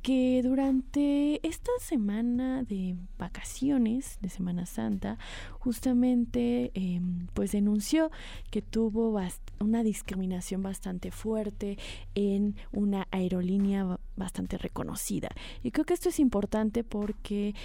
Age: 20-39